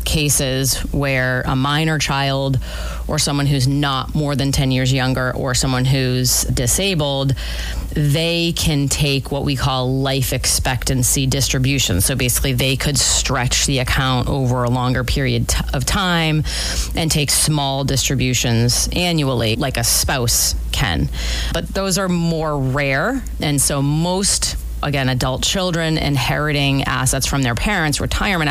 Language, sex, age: English, female, 30-49